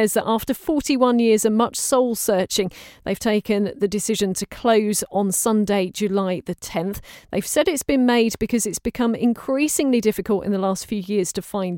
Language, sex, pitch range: English, female, 190-235 Hz